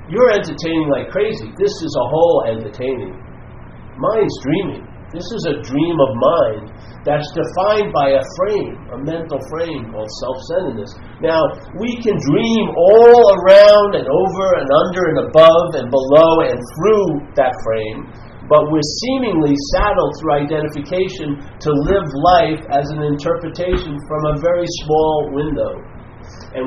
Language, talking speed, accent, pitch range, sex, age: English, 140 wpm, American, 130-170 Hz, male, 50-69